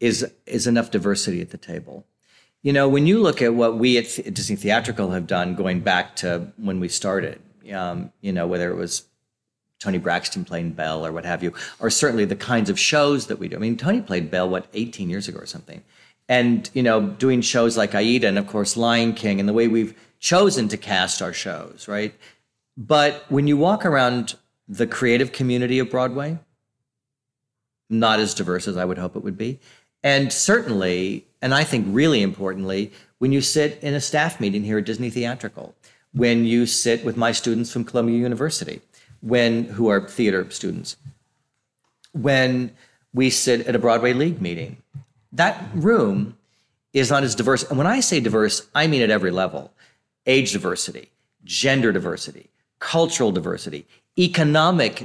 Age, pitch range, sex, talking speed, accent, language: 40-59, 110-135 Hz, male, 180 wpm, American, English